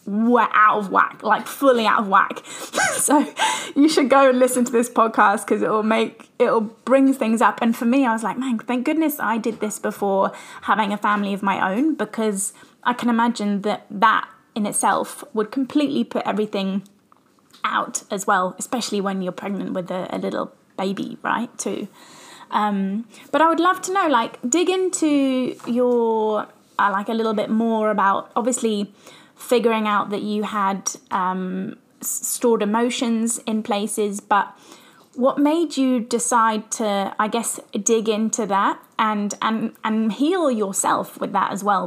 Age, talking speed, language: 20-39, 170 wpm, English